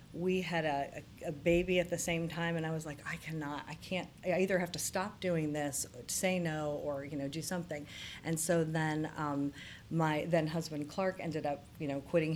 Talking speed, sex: 220 wpm, female